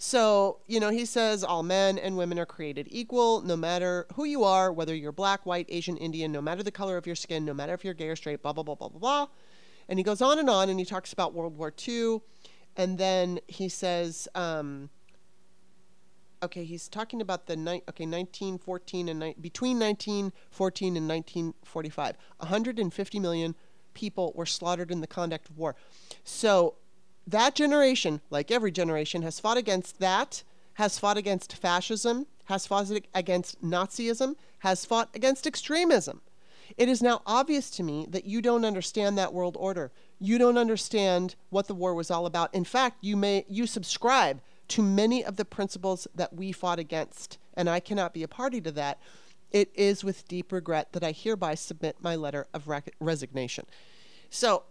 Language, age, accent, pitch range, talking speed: English, 30-49, American, 170-215 Hz, 180 wpm